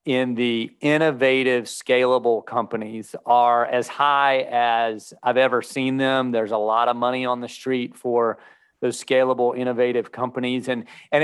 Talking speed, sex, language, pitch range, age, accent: 150 wpm, male, English, 125-150 Hz, 40-59, American